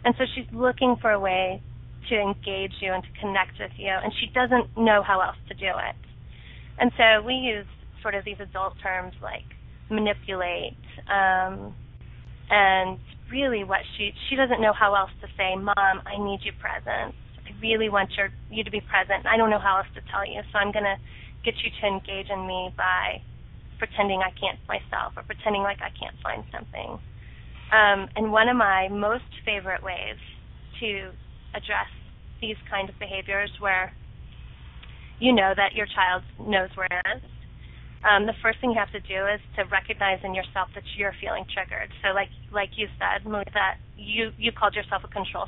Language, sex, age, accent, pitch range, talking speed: English, female, 20-39, American, 190-215 Hz, 190 wpm